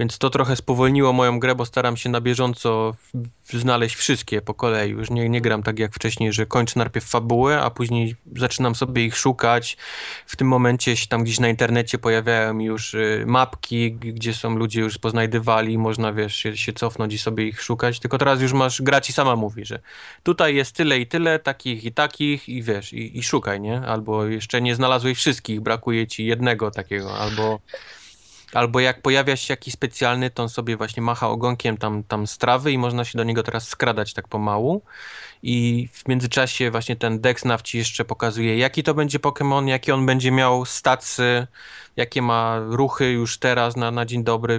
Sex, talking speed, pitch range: male, 190 wpm, 110-125 Hz